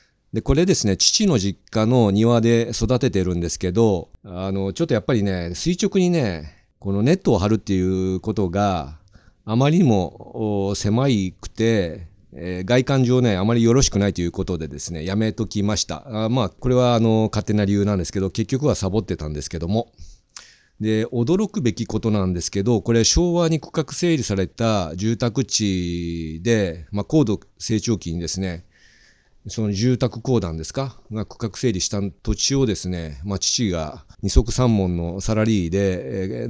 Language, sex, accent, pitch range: Japanese, male, native, 90-120 Hz